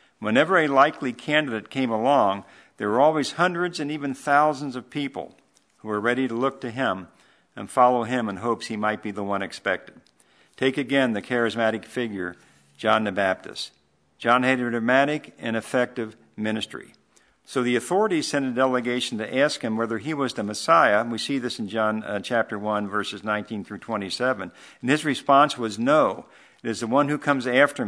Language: English